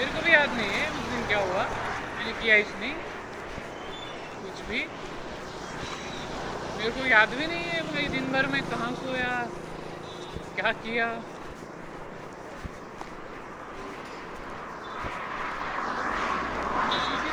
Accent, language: native, Marathi